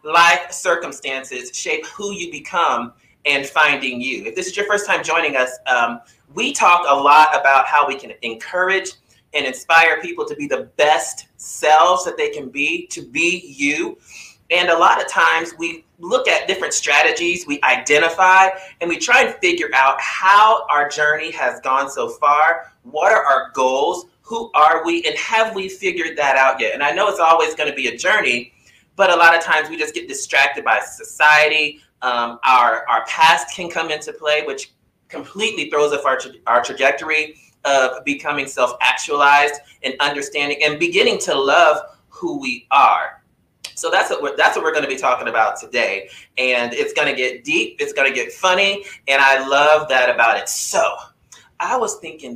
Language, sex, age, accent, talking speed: English, male, 30-49, American, 185 wpm